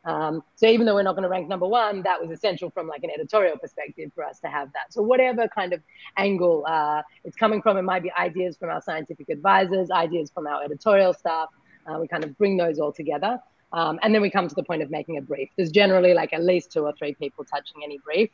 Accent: Australian